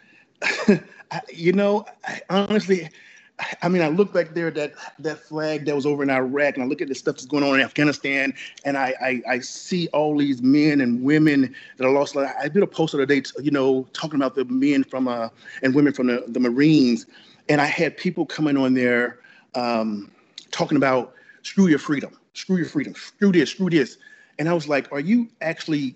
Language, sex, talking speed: English, male, 210 wpm